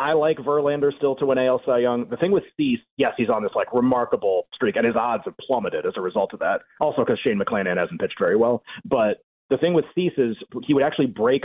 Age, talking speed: 30-49, 250 wpm